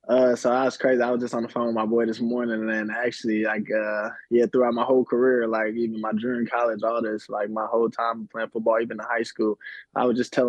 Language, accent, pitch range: English, American, 105-115 Hz